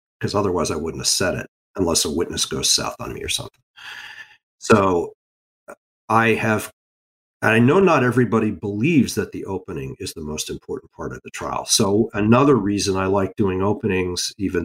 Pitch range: 90-125 Hz